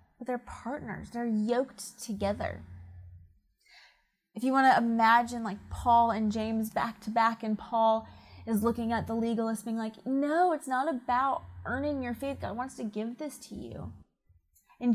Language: English